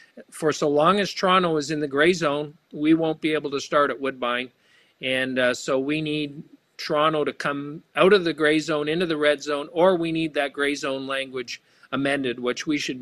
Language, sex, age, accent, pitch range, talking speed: English, male, 50-69, American, 130-150 Hz, 210 wpm